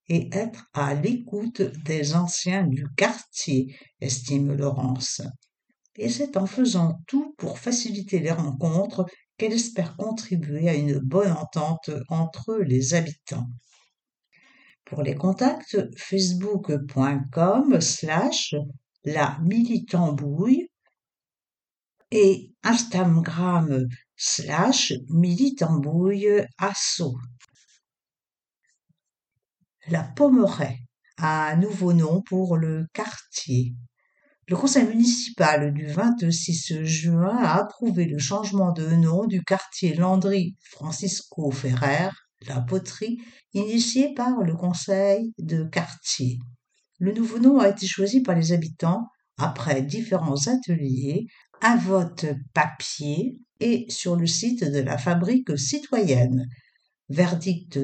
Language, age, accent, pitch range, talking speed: English, 60-79, French, 150-205 Hz, 100 wpm